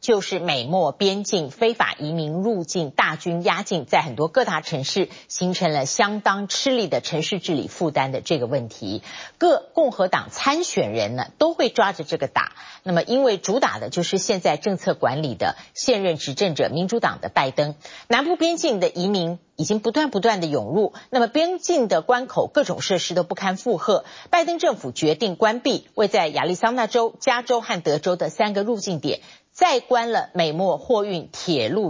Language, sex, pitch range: Chinese, female, 170-240 Hz